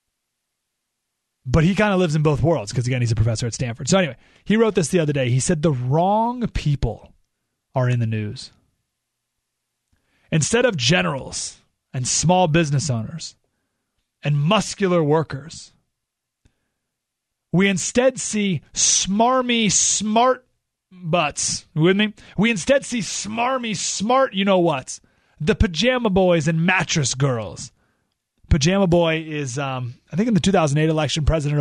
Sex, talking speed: male, 145 wpm